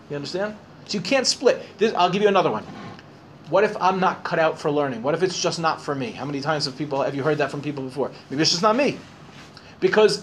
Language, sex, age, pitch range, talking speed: English, male, 30-49, 145-195 Hz, 265 wpm